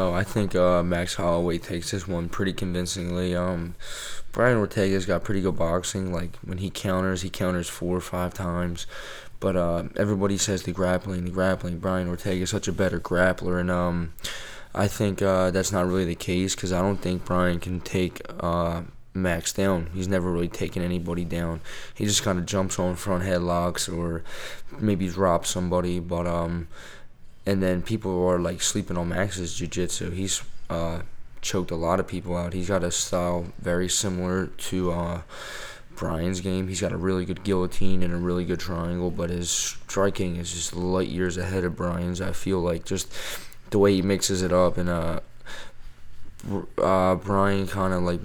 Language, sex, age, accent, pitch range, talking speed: English, male, 20-39, American, 85-95 Hz, 185 wpm